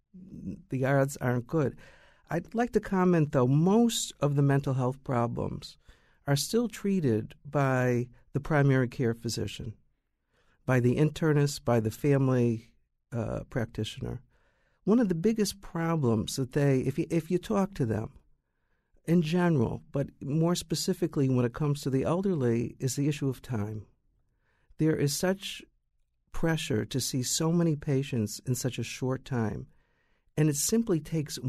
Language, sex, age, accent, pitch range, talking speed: English, male, 50-69, American, 130-170 Hz, 150 wpm